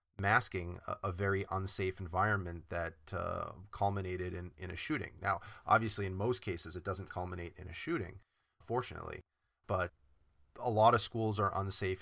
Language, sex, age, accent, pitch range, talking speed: English, male, 30-49, American, 95-115 Hz, 160 wpm